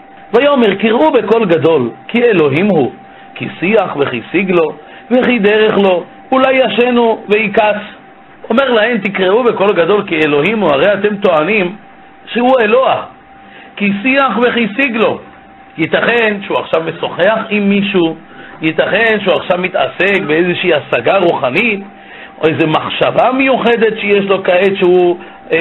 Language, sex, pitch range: Hebrew, male, 185-240 Hz